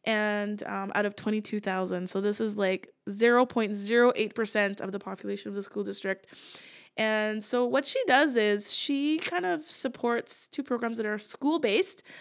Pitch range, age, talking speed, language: 205-250 Hz, 20-39, 155 wpm, English